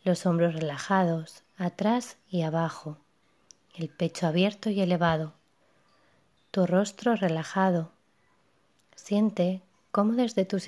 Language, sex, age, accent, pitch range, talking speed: Spanish, female, 20-39, Spanish, 175-195 Hz, 100 wpm